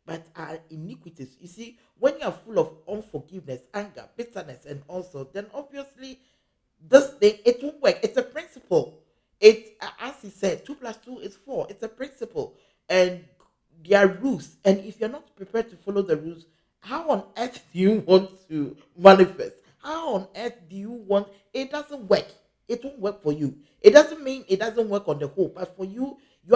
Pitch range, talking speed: 165-240 Hz, 190 wpm